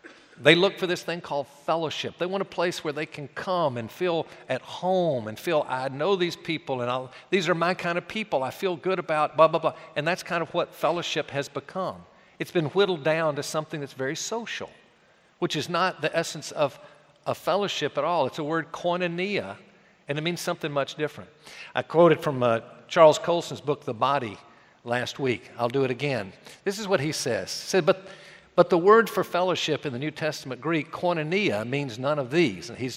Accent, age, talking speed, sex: American, 50-69, 210 wpm, male